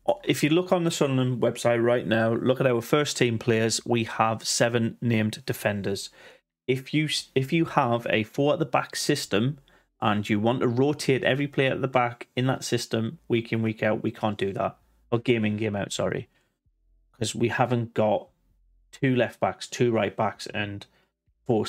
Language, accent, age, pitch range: English, British, 30-49, 110-130 Hz